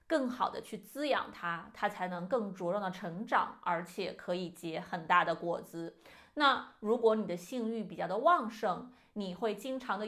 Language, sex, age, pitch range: Chinese, female, 30-49, 185-265 Hz